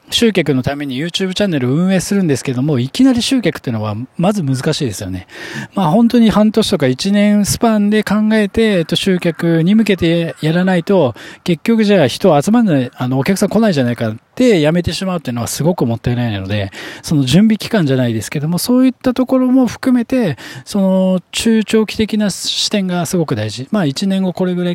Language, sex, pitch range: Japanese, male, 135-215 Hz